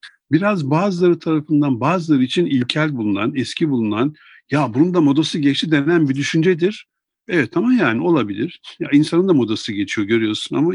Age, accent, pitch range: 50-69, native, 120-175 Hz